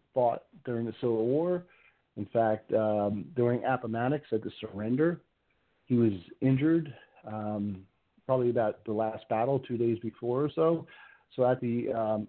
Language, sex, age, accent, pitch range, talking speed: English, male, 40-59, American, 110-135 Hz, 150 wpm